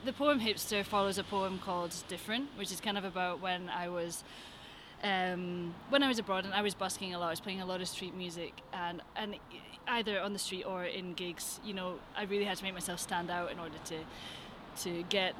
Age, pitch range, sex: 20-39, 170-200 Hz, female